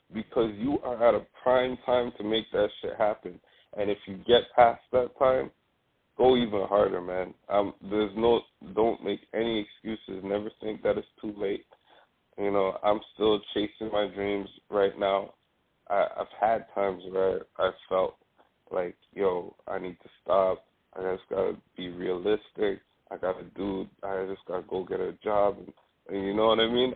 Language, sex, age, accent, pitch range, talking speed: English, male, 20-39, American, 100-120 Hz, 180 wpm